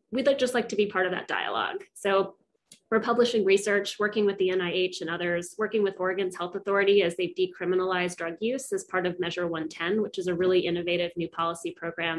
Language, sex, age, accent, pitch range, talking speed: English, female, 20-39, American, 180-205 Hz, 205 wpm